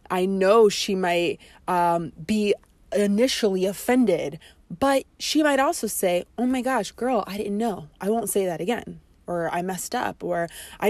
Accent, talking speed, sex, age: American, 170 wpm, female, 20-39